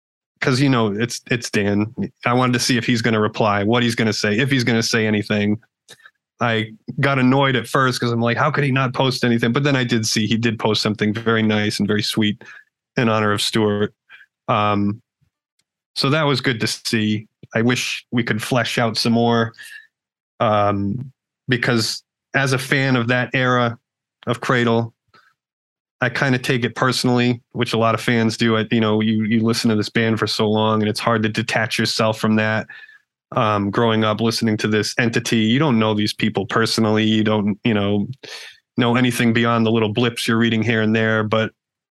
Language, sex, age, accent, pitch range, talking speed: English, male, 30-49, American, 110-125 Hz, 205 wpm